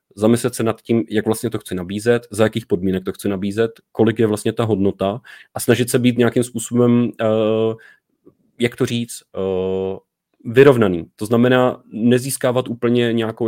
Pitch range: 100-115 Hz